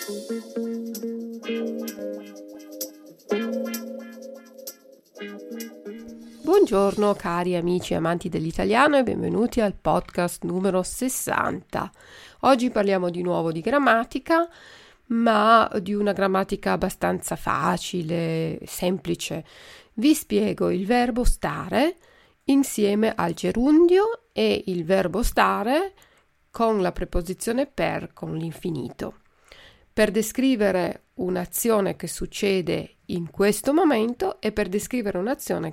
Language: Italian